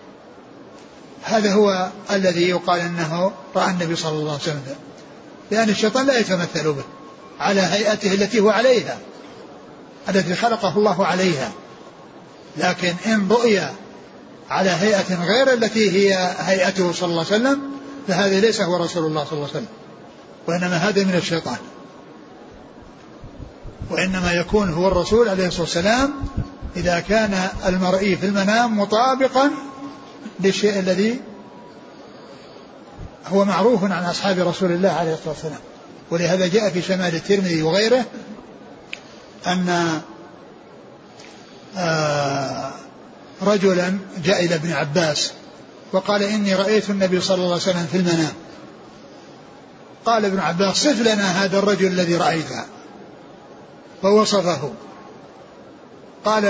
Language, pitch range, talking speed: Arabic, 175-215 Hz, 115 wpm